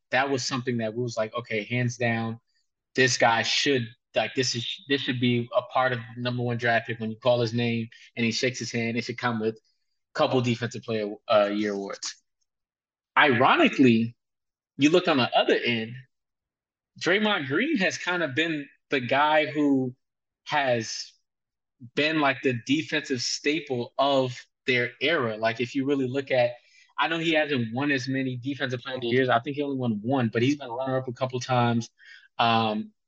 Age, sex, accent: 20-39, male, American